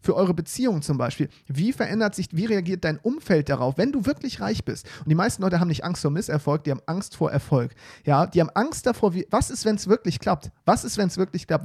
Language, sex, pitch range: German, male, 150-200 Hz